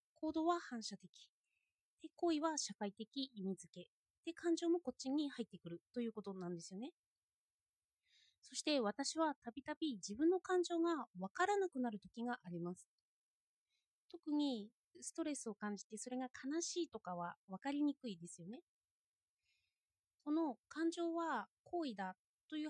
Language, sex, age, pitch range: Japanese, female, 30-49, 195-310 Hz